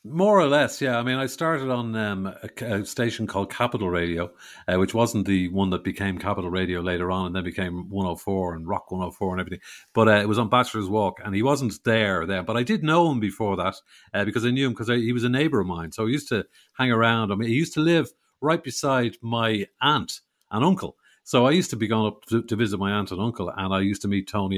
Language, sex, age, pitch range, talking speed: English, male, 50-69, 95-125 Hz, 255 wpm